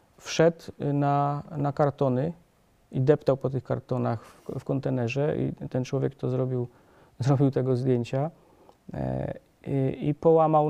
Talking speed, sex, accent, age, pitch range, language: 135 wpm, male, native, 40-59, 130-160 Hz, Polish